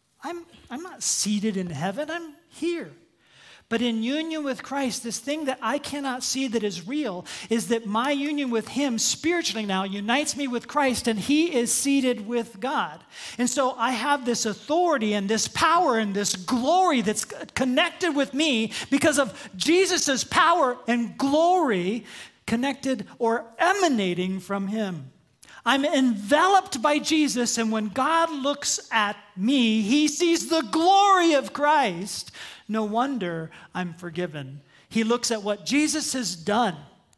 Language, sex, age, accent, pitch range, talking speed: English, male, 40-59, American, 220-290 Hz, 150 wpm